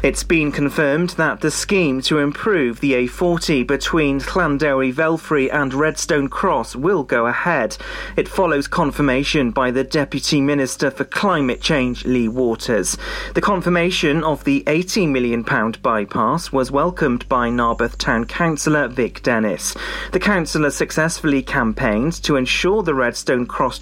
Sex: male